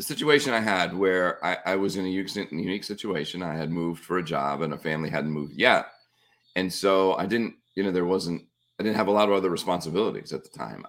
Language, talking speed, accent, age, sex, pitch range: English, 235 wpm, American, 30-49, male, 85-100 Hz